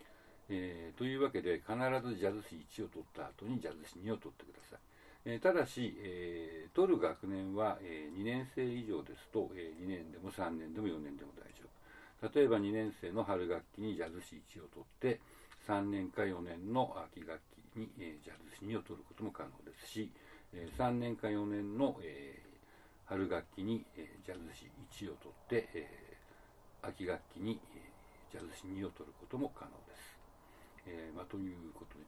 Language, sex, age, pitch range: Japanese, male, 60-79, 90-120 Hz